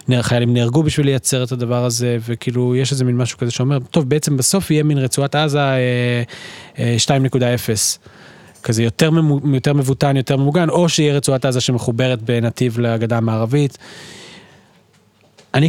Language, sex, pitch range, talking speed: Hebrew, male, 115-135 Hz, 155 wpm